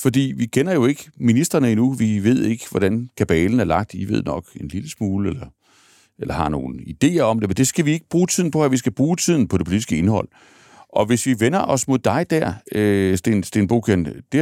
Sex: male